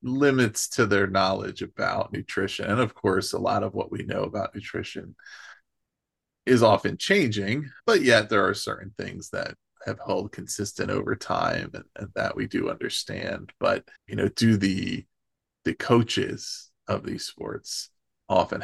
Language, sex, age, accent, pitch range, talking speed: English, male, 20-39, American, 100-115 Hz, 160 wpm